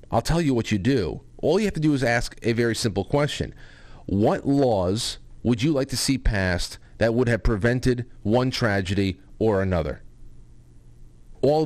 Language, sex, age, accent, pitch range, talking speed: English, male, 40-59, American, 100-125 Hz, 175 wpm